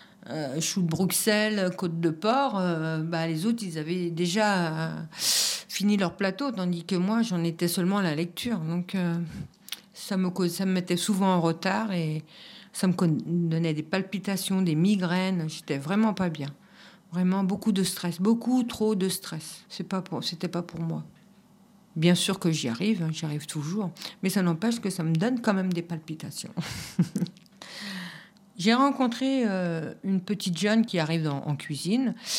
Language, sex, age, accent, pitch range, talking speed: French, female, 50-69, French, 165-200 Hz, 180 wpm